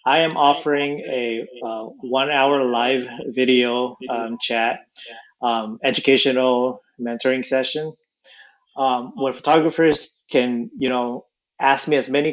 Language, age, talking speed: English, 20-39, 115 wpm